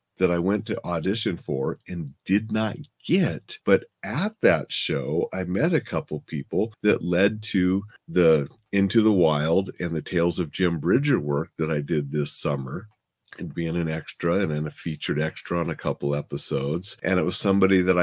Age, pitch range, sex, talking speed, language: 40-59, 80-105 Hz, male, 185 wpm, English